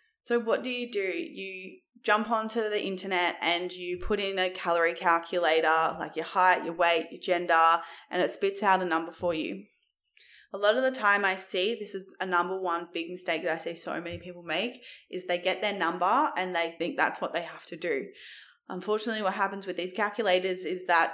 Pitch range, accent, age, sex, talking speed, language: 170-210 Hz, Australian, 20-39, female, 215 wpm, English